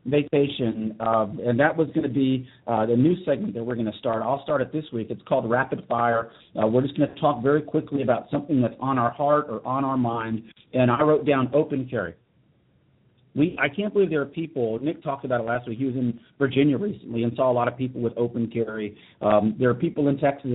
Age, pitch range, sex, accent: 50-69, 120-160 Hz, male, American